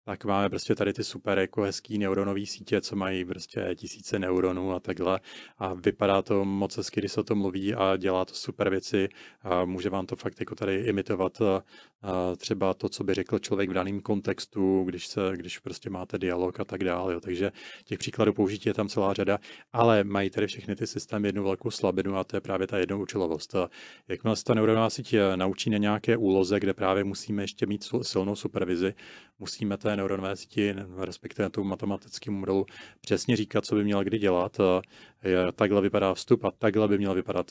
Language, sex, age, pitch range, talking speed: Czech, male, 30-49, 95-105 Hz, 195 wpm